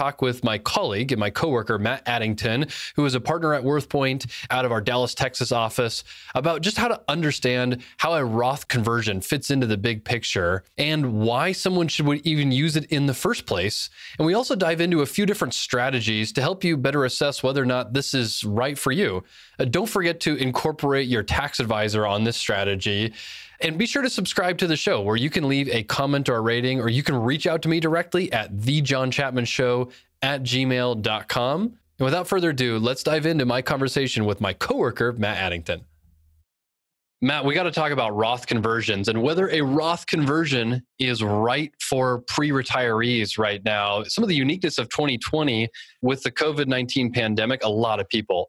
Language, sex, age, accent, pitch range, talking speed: English, male, 20-39, American, 115-150 Hz, 190 wpm